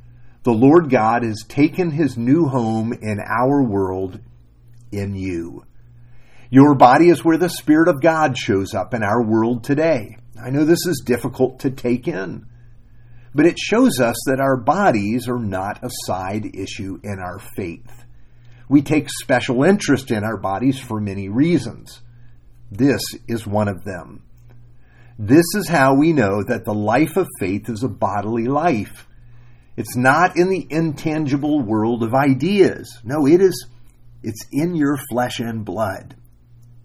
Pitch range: 115-135 Hz